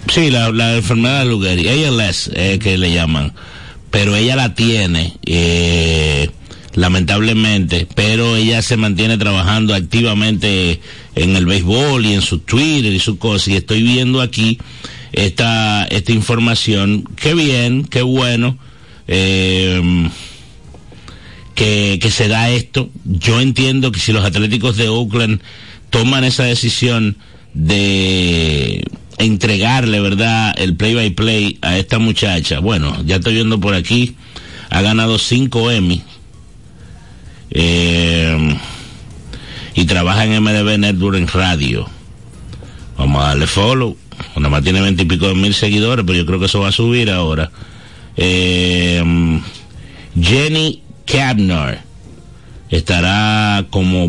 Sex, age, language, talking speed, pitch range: male, 60-79, Spanish, 125 wpm, 90-115 Hz